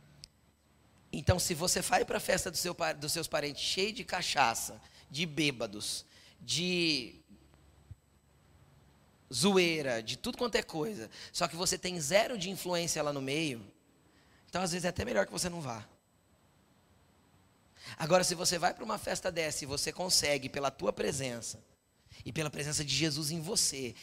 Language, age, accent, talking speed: Portuguese, 20-39, Brazilian, 155 wpm